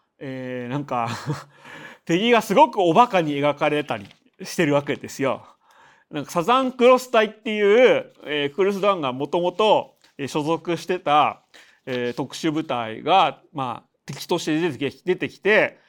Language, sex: Japanese, male